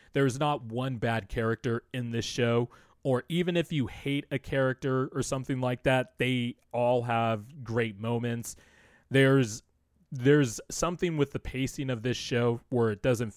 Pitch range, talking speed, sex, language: 110-130 Hz, 160 wpm, male, English